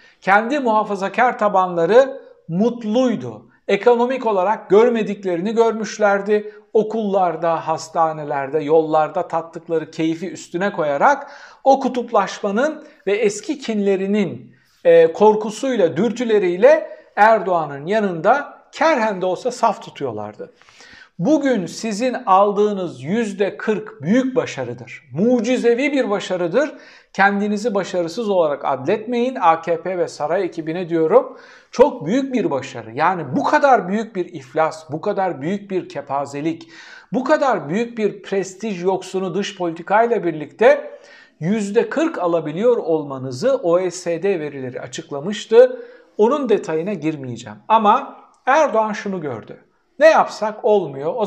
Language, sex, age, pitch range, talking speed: Turkish, male, 60-79, 170-235 Hz, 105 wpm